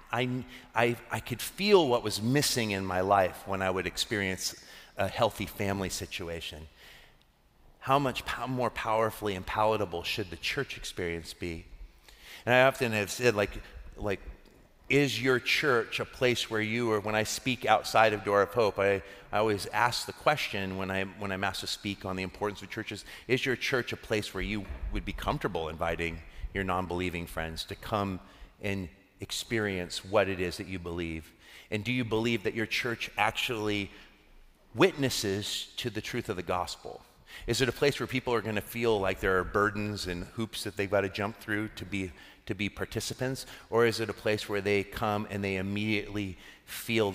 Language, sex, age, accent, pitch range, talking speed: English, male, 30-49, American, 95-115 Hz, 190 wpm